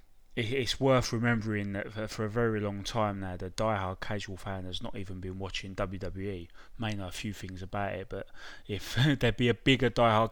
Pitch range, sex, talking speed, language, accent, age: 100-115 Hz, male, 200 wpm, English, British, 20-39